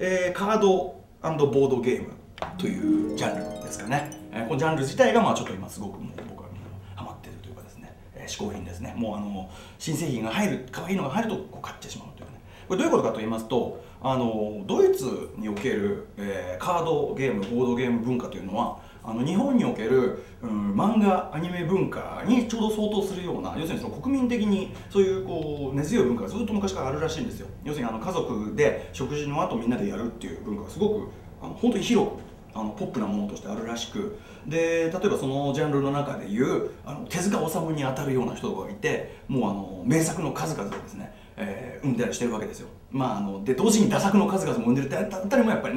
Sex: male